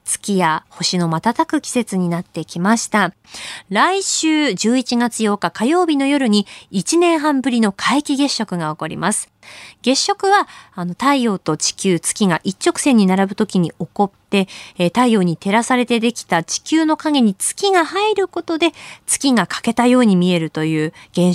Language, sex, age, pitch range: Japanese, female, 20-39, 190-310 Hz